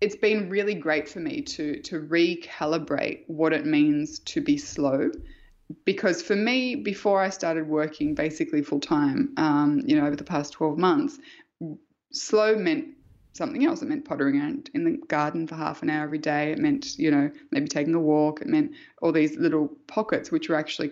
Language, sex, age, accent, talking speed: English, female, 20-39, Australian, 190 wpm